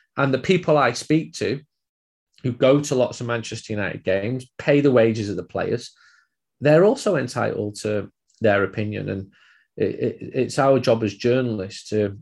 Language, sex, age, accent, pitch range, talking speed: English, male, 20-39, British, 110-130 Hz, 160 wpm